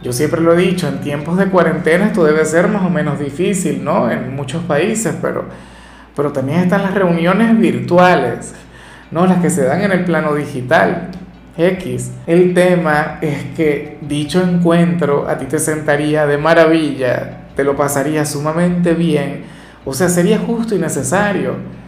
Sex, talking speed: male, 165 wpm